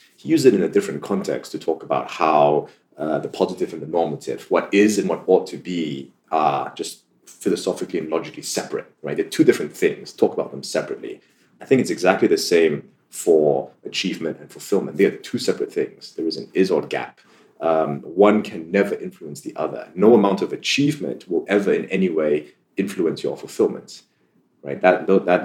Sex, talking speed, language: male, 190 wpm, English